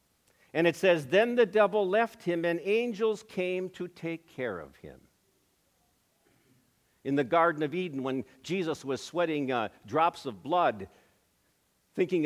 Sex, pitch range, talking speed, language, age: male, 145-215 Hz, 145 wpm, English, 60-79